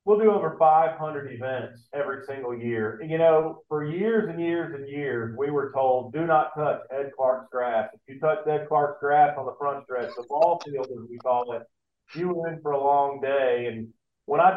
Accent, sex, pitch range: American, male, 140-160 Hz